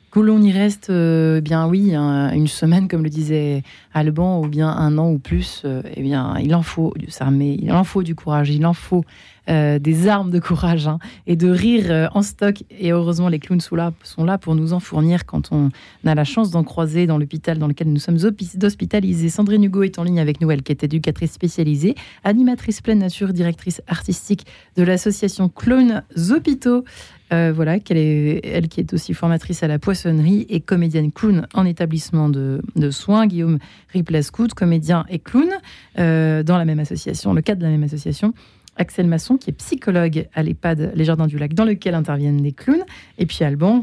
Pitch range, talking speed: 155-190 Hz, 205 wpm